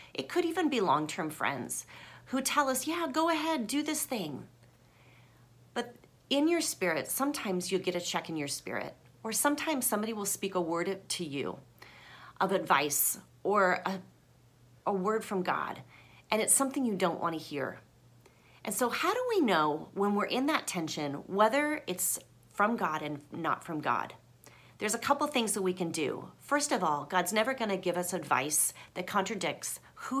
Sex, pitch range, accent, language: female, 160-235 Hz, American, English